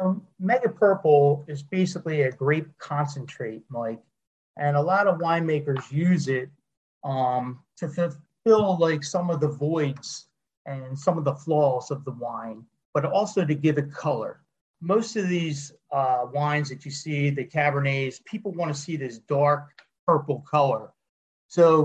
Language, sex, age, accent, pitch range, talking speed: English, male, 40-59, American, 135-165 Hz, 155 wpm